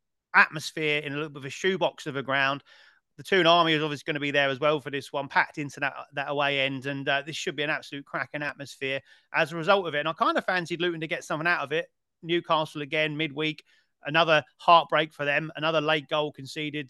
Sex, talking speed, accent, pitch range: male, 240 wpm, British, 140-160 Hz